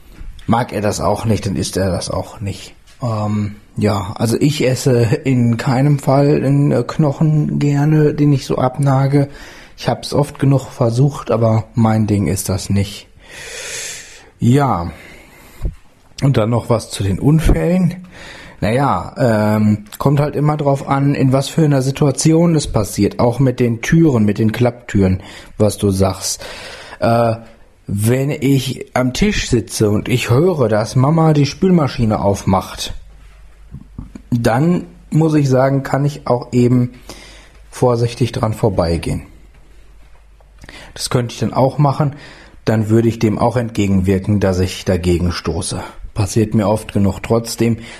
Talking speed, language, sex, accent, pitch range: 145 wpm, German, male, German, 100-135 Hz